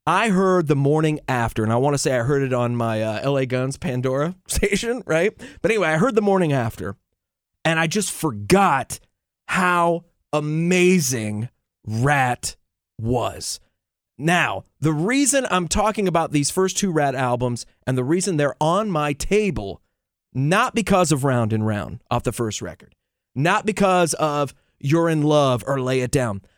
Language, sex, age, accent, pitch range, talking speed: English, male, 30-49, American, 125-180 Hz, 165 wpm